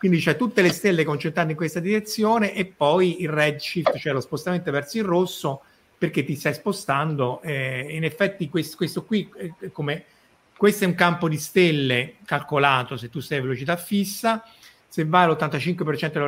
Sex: male